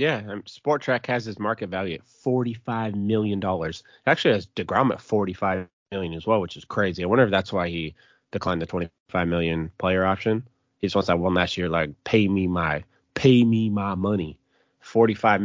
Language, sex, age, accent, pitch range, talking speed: English, male, 30-49, American, 95-125 Hz, 195 wpm